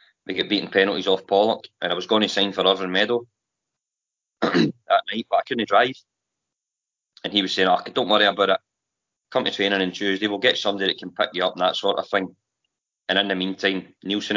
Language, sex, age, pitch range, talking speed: English, male, 20-39, 95-105 Hz, 220 wpm